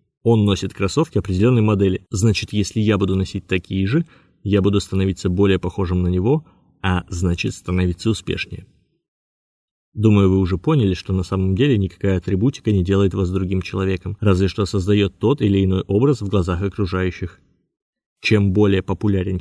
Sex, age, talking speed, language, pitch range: male, 20-39, 160 wpm, Russian, 95-105 Hz